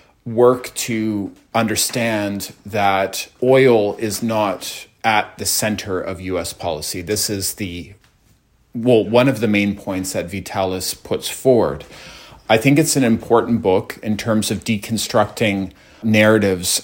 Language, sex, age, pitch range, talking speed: English, male, 30-49, 95-110 Hz, 130 wpm